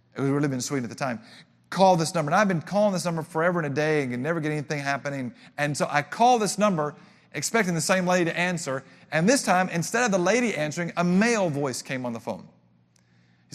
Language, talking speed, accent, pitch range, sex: English, 245 wpm, American, 150-195 Hz, male